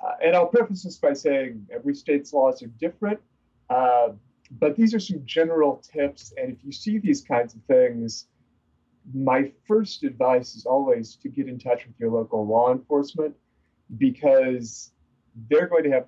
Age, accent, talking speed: 30-49, American, 170 wpm